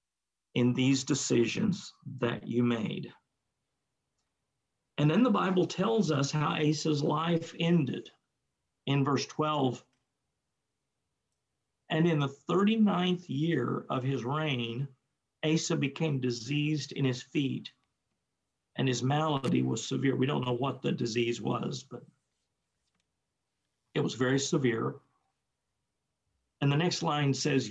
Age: 50-69